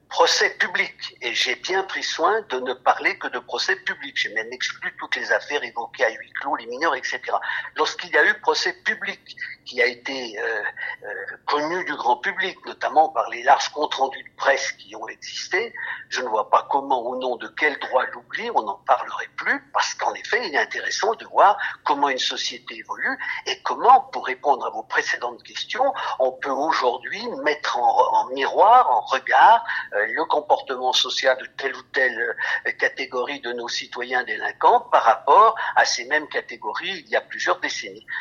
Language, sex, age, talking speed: English, male, 60-79, 190 wpm